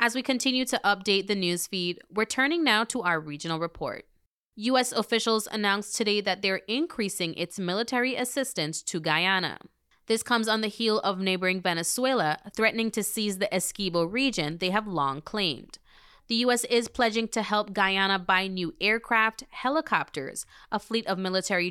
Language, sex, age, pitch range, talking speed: English, female, 20-39, 175-225 Hz, 165 wpm